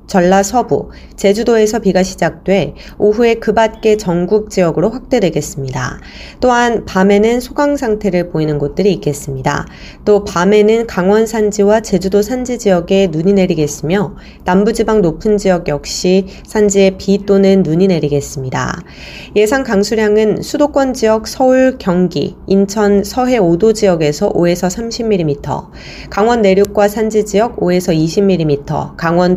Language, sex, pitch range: Korean, female, 170-220 Hz